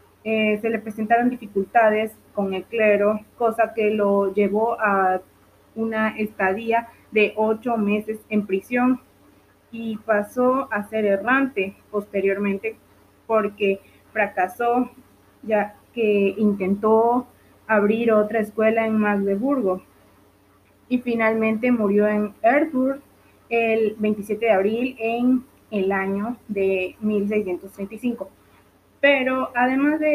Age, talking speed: 20-39, 105 wpm